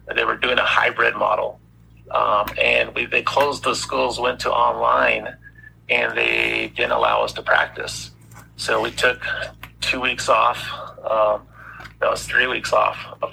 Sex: male